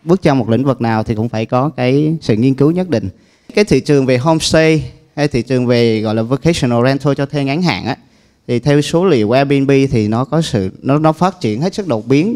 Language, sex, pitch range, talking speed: Vietnamese, male, 120-155 Hz, 250 wpm